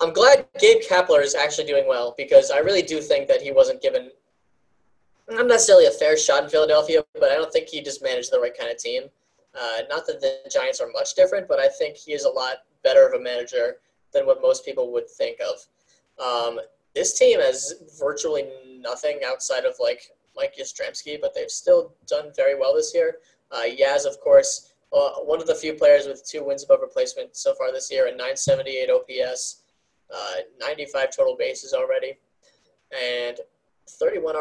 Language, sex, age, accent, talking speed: English, male, 10-29, American, 190 wpm